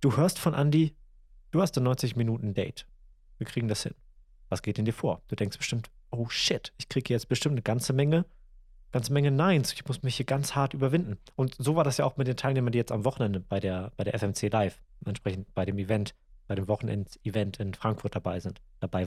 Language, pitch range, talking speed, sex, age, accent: German, 100-140 Hz, 230 wpm, male, 30-49, German